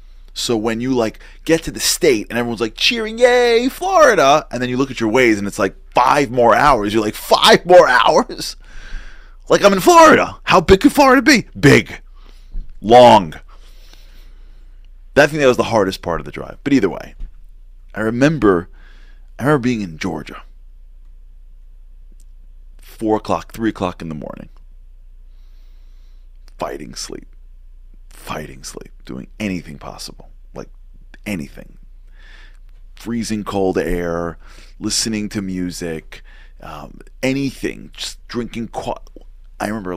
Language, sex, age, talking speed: English, male, 30-49, 140 wpm